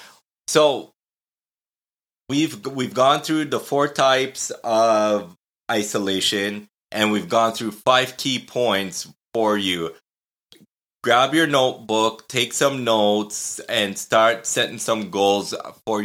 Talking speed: 115 wpm